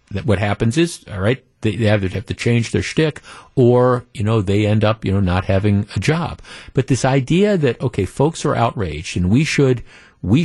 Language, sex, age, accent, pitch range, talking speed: English, male, 50-69, American, 110-145 Hz, 220 wpm